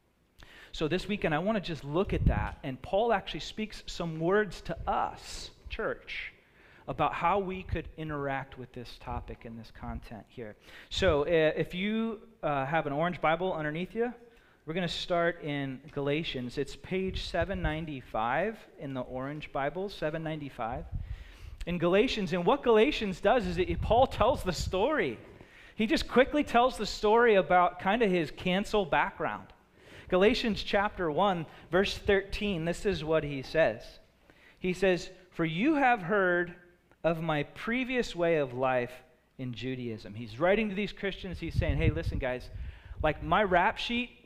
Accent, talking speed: American, 160 wpm